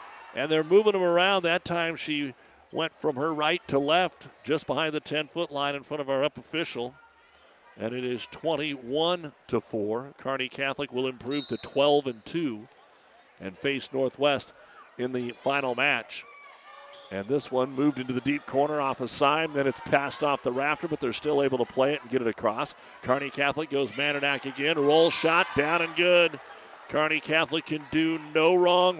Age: 50-69